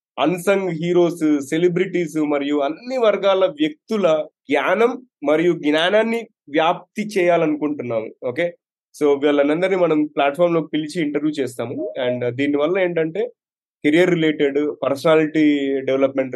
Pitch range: 140-180 Hz